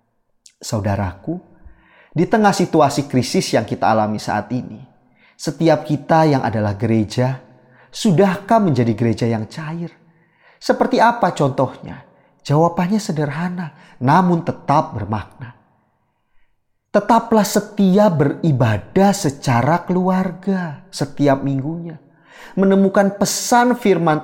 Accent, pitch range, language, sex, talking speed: native, 130-185 Hz, Indonesian, male, 95 wpm